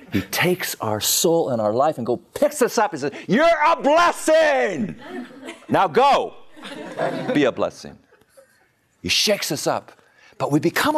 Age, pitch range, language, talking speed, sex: 50-69, 145-230 Hz, English, 160 wpm, male